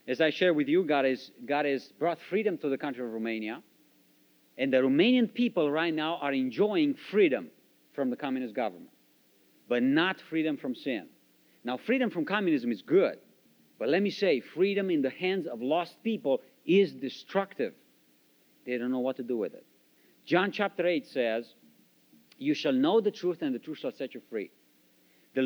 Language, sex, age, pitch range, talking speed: English, male, 50-69, 120-195 Hz, 180 wpm